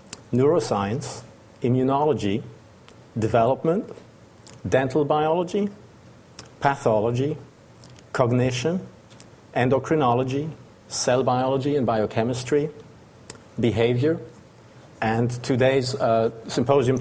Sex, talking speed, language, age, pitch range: male, 60 wpm, English, 50-69, 110-130 Hz